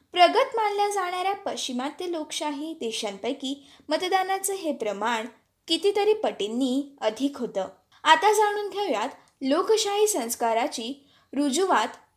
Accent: native